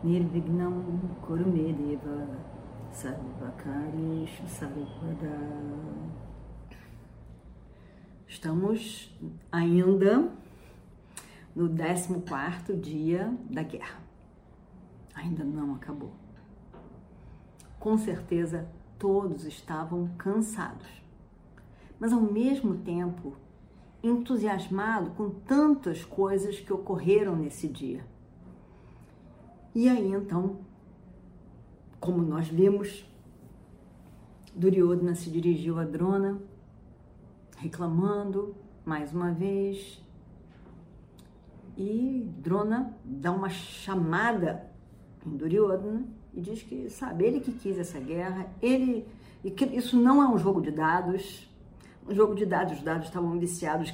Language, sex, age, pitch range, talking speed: Portuguese, female, 50-69, 160-200 Hz, 90 wpm